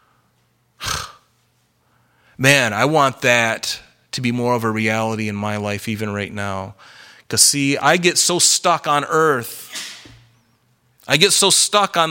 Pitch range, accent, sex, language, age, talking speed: 115-160 Hz, American, male, English, 30-49, 145 wpm